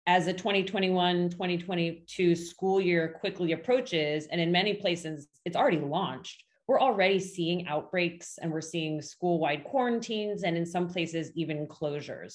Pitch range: 165-195 Hz